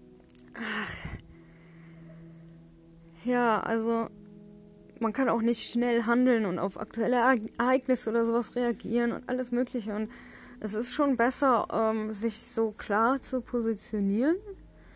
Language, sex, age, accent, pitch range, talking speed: German, female, 20-39, German, 215-250 Hz, 110 wpm